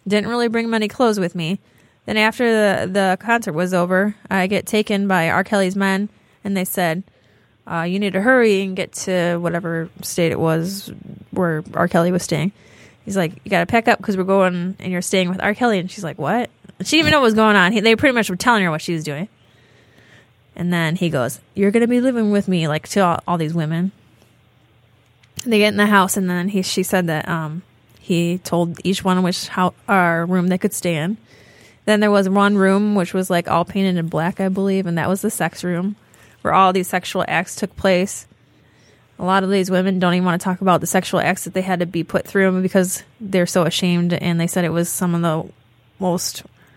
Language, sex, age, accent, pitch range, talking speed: English, female, 20-39, American, 165-195 Hz, 230 wpm